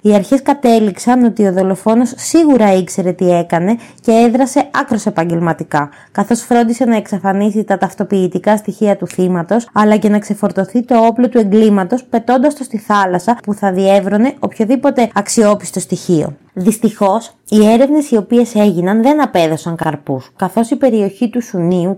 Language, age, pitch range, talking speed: Greek, 20-39, 190-235 Hz, 150 wpm